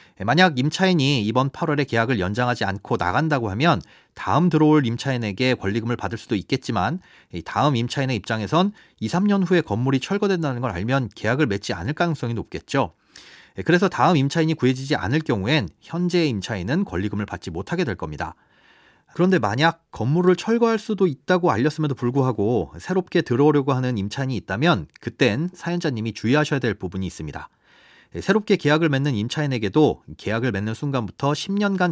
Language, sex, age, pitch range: Korean, male, 30-49, 115-170 Hz